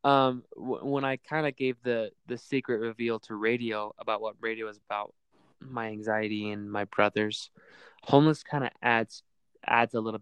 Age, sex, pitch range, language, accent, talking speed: 20-39, male, 105-125 Hz, English, American, 170 wpm